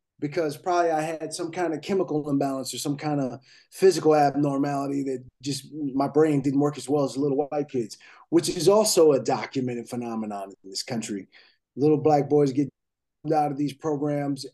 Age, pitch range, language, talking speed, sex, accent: 30-49, 130-155 Hz, English, 180 wpm, male, American